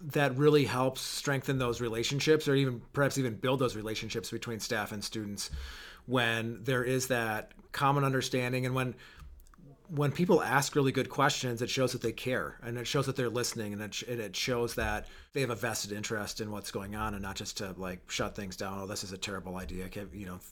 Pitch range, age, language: 105-130 Hz, 30-49, English